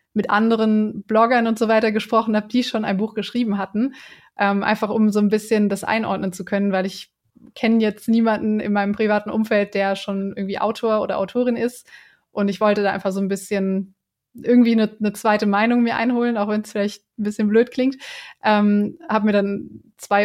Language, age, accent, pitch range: German, 20-39, German, 205-230 Hz